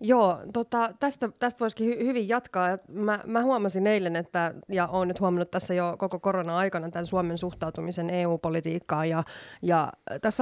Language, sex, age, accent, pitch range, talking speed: Finnish, female, 20-39, native, 170-210 Hz, 160 wpm